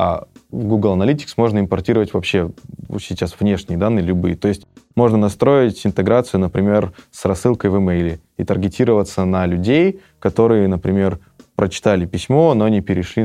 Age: 20-39